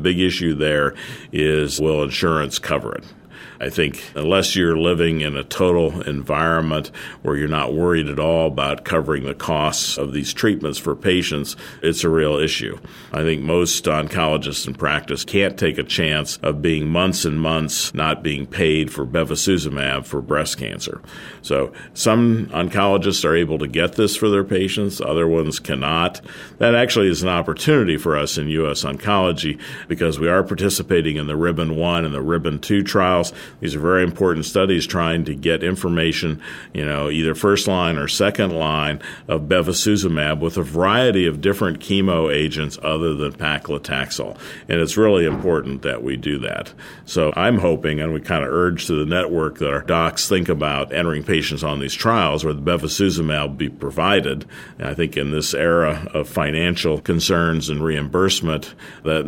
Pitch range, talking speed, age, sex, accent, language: 75-85 Hz, 175 wpm, 50-69, male, American, English